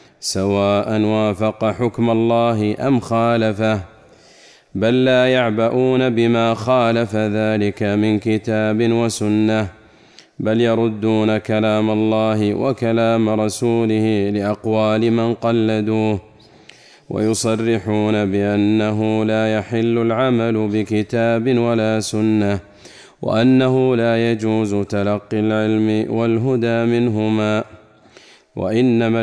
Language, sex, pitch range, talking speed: Arabic, male, 110-115 Hz, 80 wpm